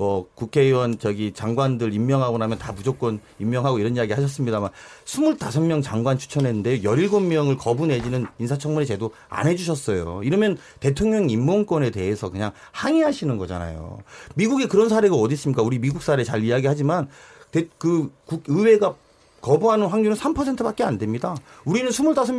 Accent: native